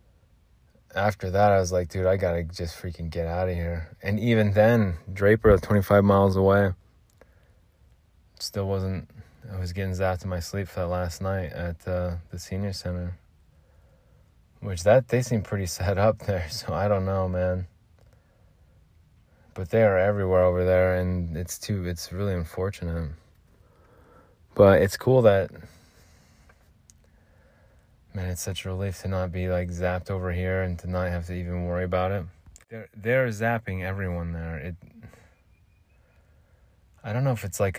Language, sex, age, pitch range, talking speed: English, male, 20-39, 85-100 Hz, 160 wpm